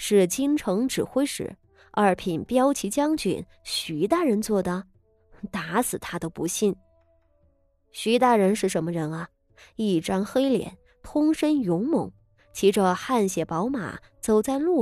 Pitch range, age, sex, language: 170-255 Hz, 20-39, female, Chinese